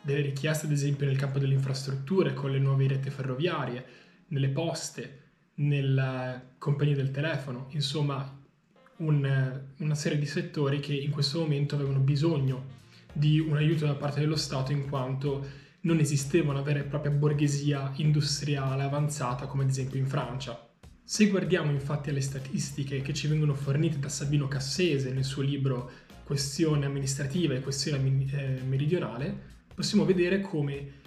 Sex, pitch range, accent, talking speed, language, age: male, 135-155 Hz, native, 150 wpm, Italian, 20-39